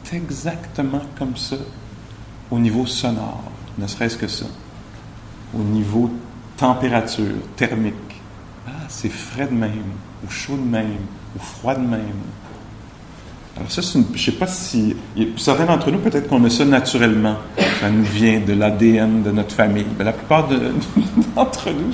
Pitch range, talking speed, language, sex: 105-130 Hz, 160 wpm, English, male